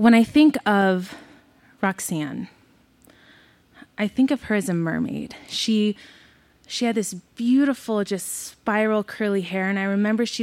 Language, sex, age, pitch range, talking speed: English, female, 20-39, 180-225 Hz, 145 wpm